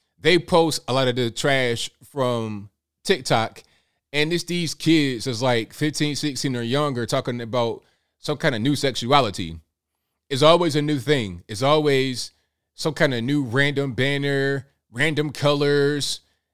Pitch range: 120-150 Hz